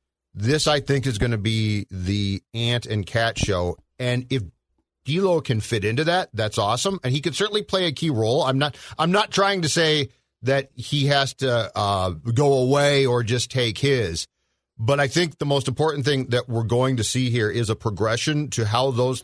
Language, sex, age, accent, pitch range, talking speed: English, male, 40-59, American, 120-150 Hz, 205 wpm